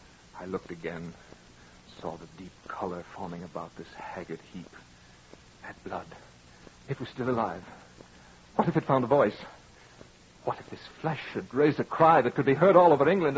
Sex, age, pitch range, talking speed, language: male, 60-79, 95-145 Hz, 175 wpm, English